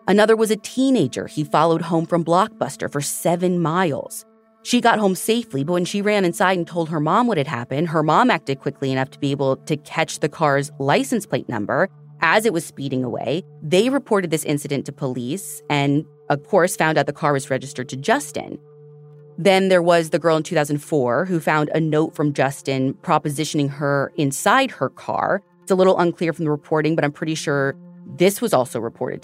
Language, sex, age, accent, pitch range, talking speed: English, female, 30-49, American, 145-190 Hz, 200 wpm